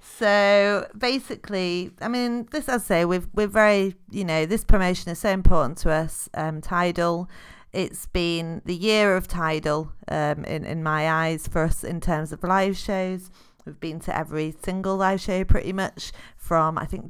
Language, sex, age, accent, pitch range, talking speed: English, female, 30-49, British, 165-200 Hz, 180 wpm